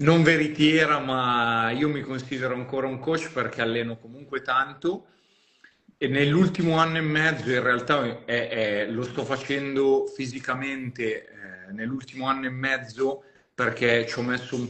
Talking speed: 140 wpm